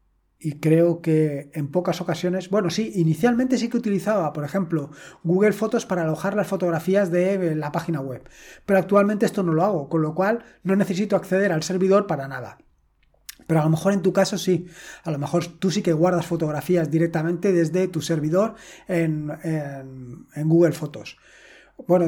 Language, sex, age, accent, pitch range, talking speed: Spanish, male, 20-39, Spanish, 160-200 Hz, 175 wpm